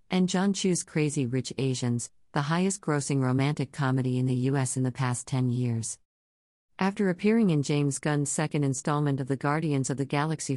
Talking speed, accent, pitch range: 180 wpm, American, 130-160 Hz